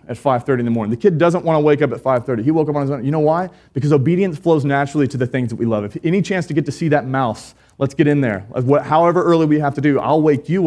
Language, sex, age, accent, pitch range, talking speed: English, male, 30-49, American, 110-145 Hz, 310 wpm